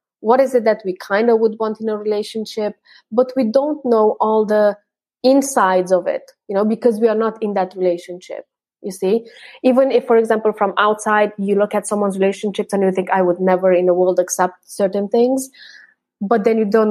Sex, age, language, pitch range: female, 20-39, English, 190-230 Hz